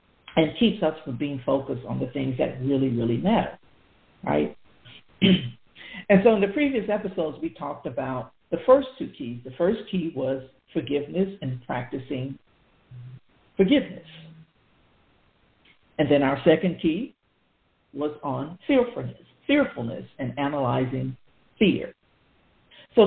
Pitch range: 135-185 Hz